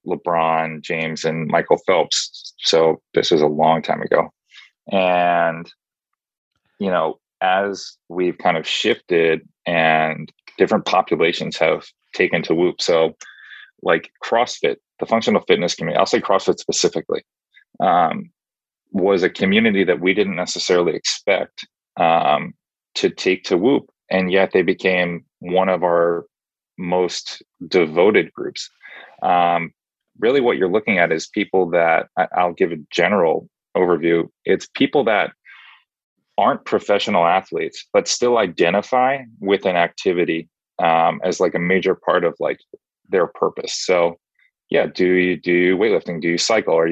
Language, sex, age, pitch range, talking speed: English, male, 30-49, 85-120 Hz, 140 wpm